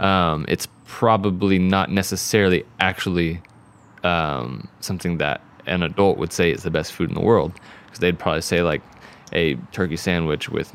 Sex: male